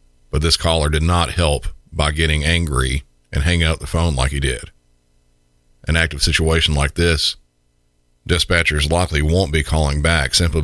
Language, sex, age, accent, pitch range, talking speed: English, male, 40-59, American, 65-80 Hz, 165 wpm